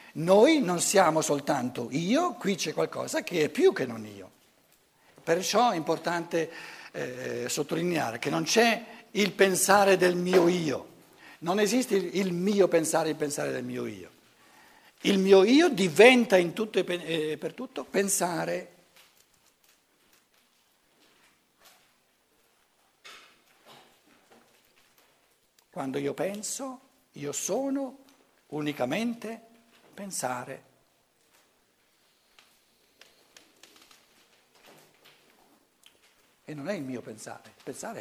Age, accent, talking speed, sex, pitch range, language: 60-79, native, 95 wpm, male, 150-225 Hz, Italian